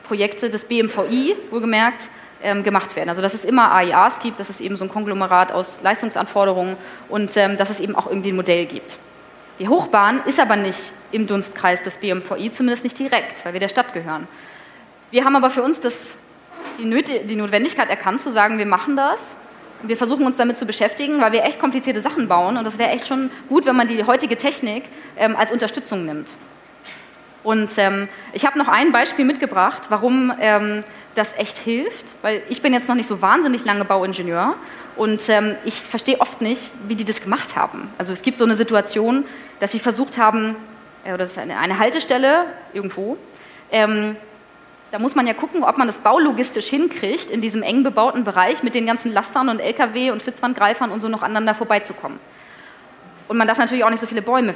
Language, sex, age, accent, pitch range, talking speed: German, female, 20-39, German, 205-255 Hz, 195 wpm